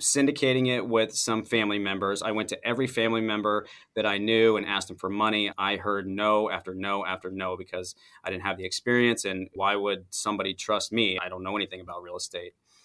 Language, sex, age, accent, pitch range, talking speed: English, male, 30-49, American, 95-110 Hz, 215 wpm